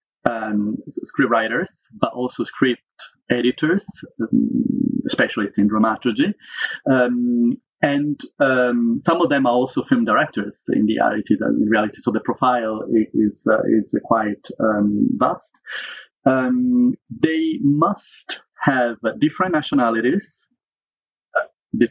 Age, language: 40-59, English